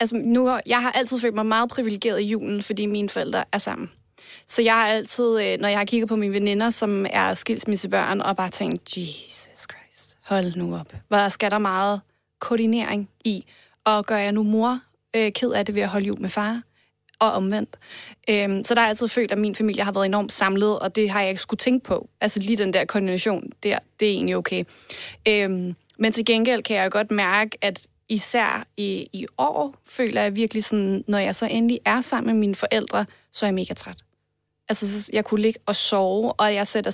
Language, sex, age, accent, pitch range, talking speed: Danish, female, 30-49, native, 205-235 Hz, 215 wpm